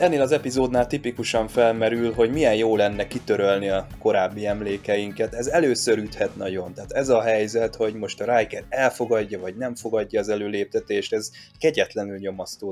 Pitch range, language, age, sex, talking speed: 100-120 Hz, Hungarian, 20-39, male, 160 wpm